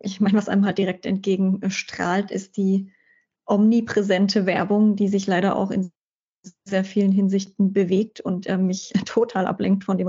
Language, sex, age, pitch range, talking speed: German, female, 30-49, 190-220 Hz, 160 wpm